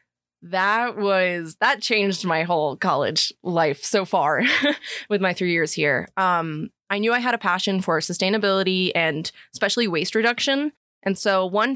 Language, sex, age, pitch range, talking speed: English, female, 20-39, 175-225 Hz, 160 wpm